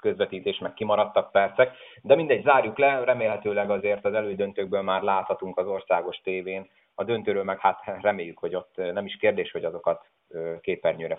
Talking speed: 160 wpm